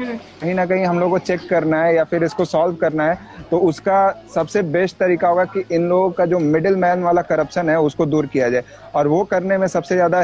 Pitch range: 150-175 Hz